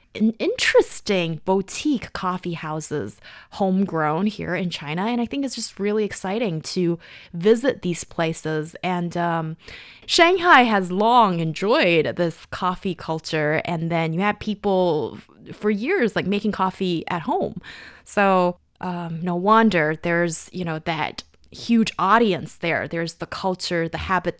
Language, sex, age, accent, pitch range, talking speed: English, female, 20-39, American, 160-215 Hz, 140 wpm